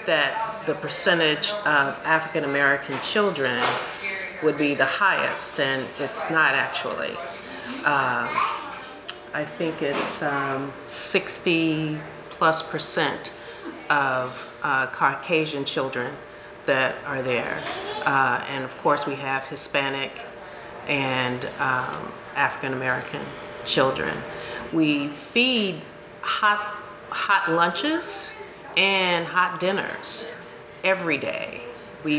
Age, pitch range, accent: 40-59, 140-190 Hz, American